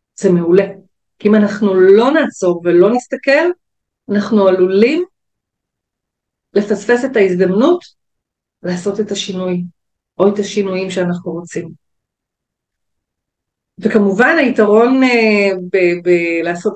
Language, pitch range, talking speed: Hebrew, 180-215 Hz, 95 wpm